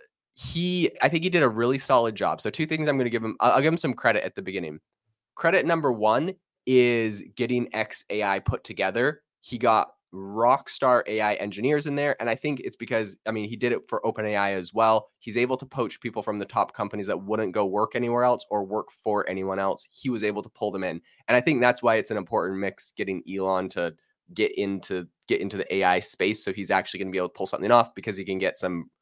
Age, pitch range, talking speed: 20-39, 105-130 Hz, 240 wpm